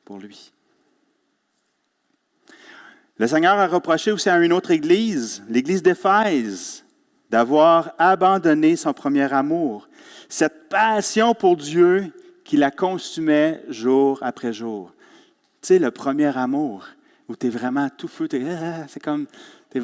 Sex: male